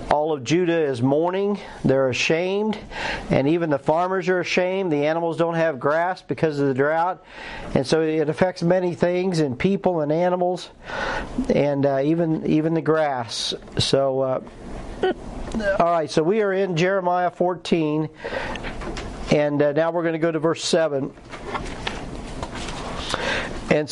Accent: American